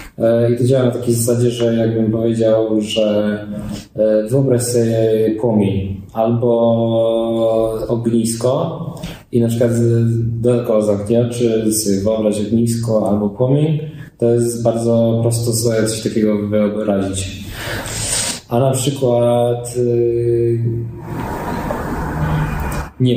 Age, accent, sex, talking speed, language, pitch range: 20-39, native, male, 95 wpm, Polish, 105-120 Hz